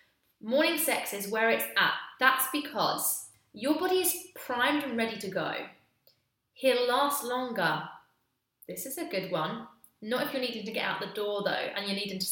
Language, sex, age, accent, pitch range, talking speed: English, female, 20-39, British, 195-285 Hz, 185 wpm